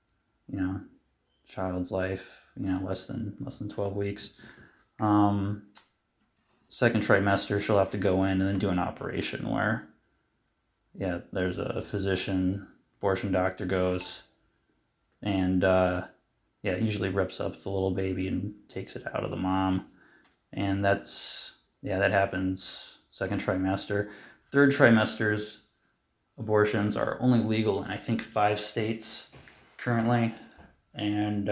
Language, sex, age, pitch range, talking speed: English, male, 20-39, 95-110 Hz, 130 wpm